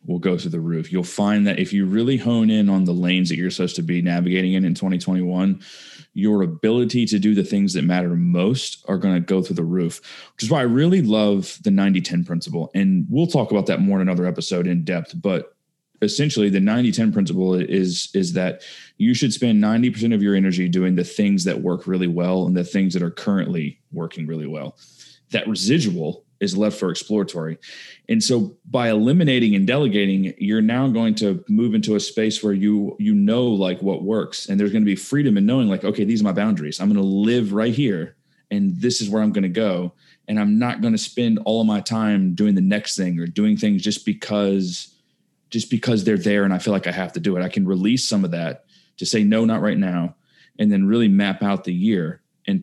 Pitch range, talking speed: 90-120 Hz, 225 wpm